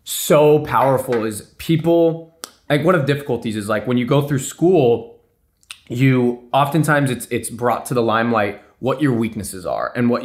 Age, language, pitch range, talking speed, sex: 20-39, English, 115-145 Hz, 170 wpm, male